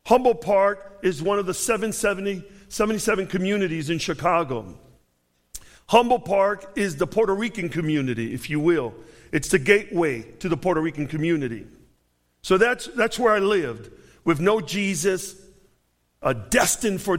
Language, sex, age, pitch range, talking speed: English, male, 50-69, 170-230 Hz, 140 wpm